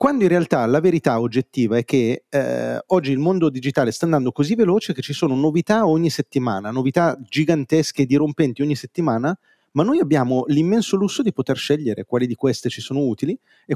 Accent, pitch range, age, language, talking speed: native, 125-160 Hz, 40-59, Italian, 190 wpm